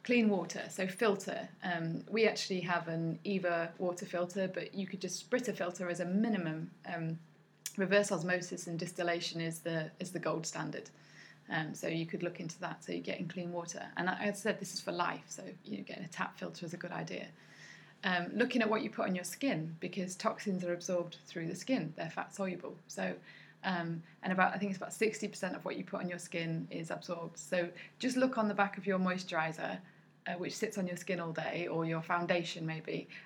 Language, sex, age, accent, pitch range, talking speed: English, female, 20-39, British, 170-200 Hz, 220 wpm